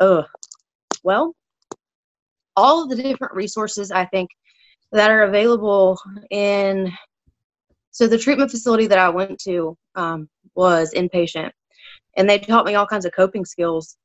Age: 20-39